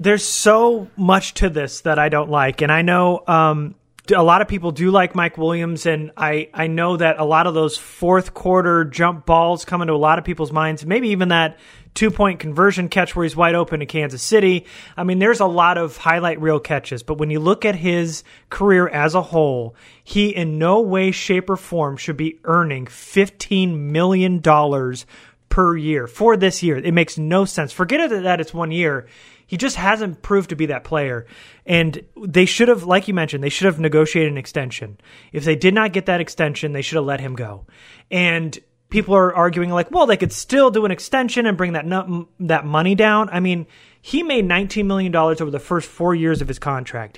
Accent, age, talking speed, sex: American, 30-49, 210 wpm, male